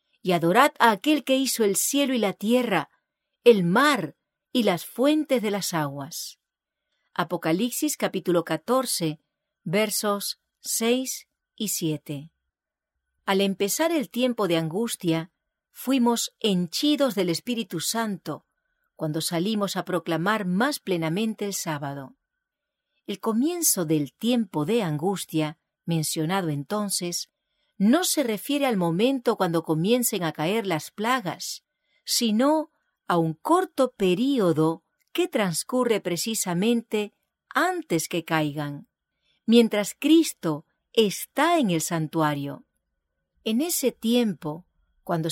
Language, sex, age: English, female, 50-69